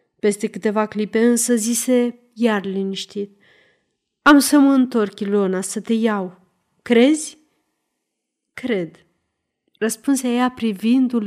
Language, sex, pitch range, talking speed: Romanian, female, 205-260 Hz, 105 wpm